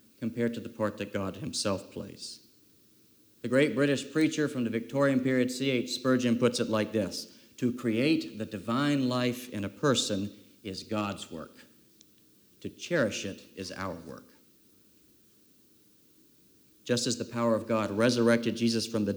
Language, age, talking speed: English, 50-69, 155 wpm